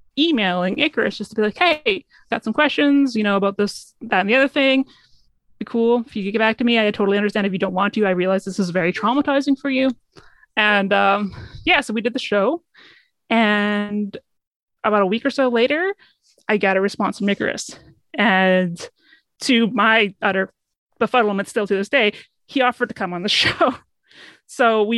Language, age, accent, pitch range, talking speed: English, 20-39, American, 200-245 Hz, 200 wpm